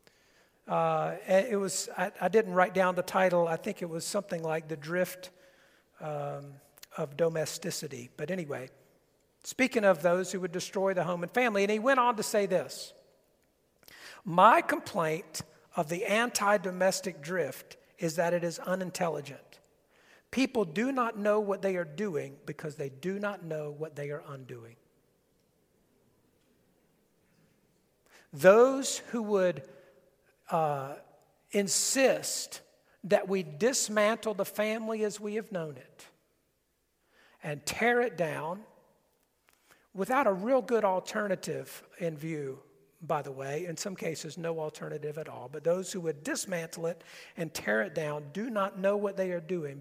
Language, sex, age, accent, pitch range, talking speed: English, male, 50-69, American, 155-205 Hz, 145 wpm